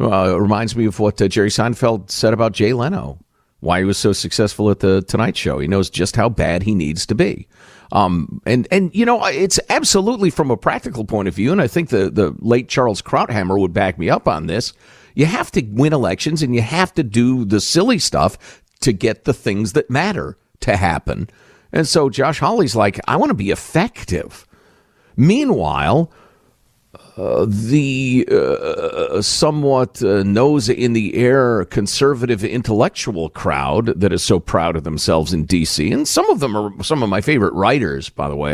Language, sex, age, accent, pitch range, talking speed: English, male, 50-69, American, 95-145 Hz, 190 wpm